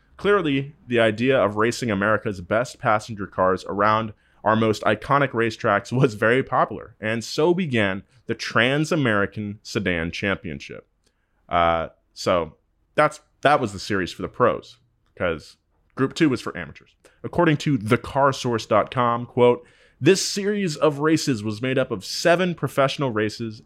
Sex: male